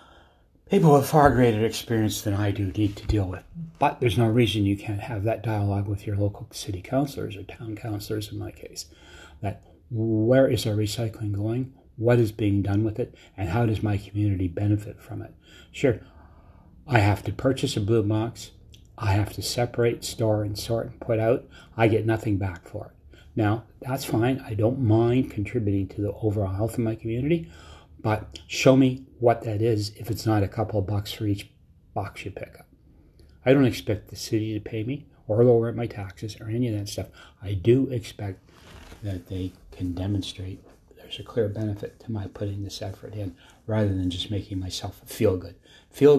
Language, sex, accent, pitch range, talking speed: English, male, American, 100-115 Hz, 195 wpm